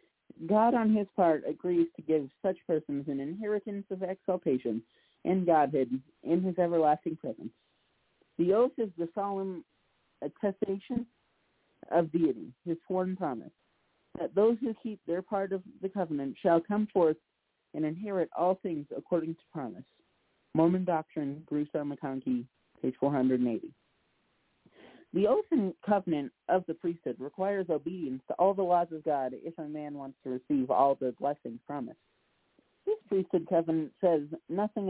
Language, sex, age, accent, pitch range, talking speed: English, male, 40-59, American, 150-195 Hz, 145 wpm